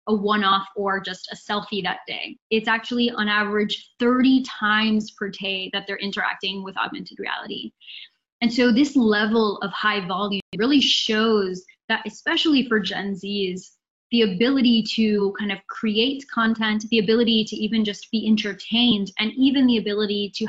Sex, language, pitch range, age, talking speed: female, English, 200-235 Hz, 10-29, 160 wpm